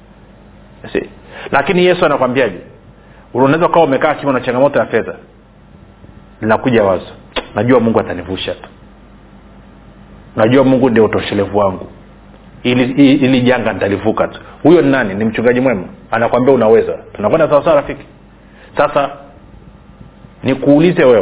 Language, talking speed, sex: Swahili, 120 wpm, male